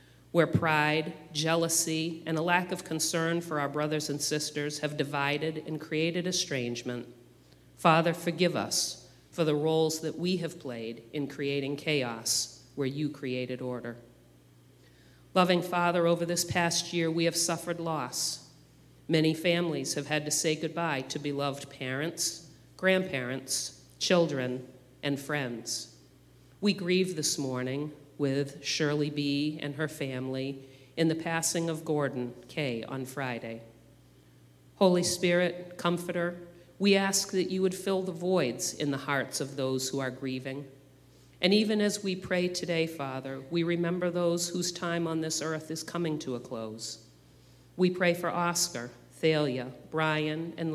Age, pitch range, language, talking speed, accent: 40-59, 130-170 Hz, English, 145 wpm, American